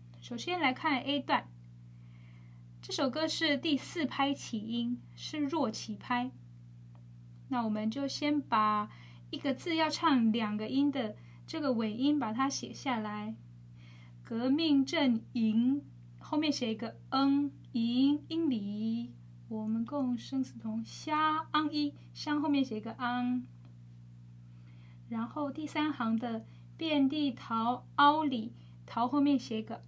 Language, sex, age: Chinese, female, 10-29